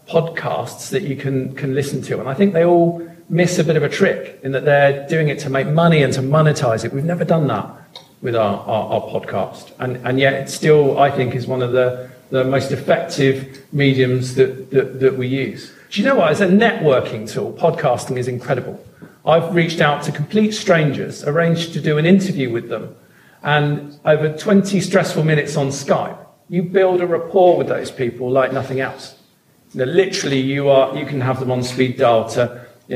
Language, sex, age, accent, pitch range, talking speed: English, male, 40-59, British, 130-175 Hz, 205 wpm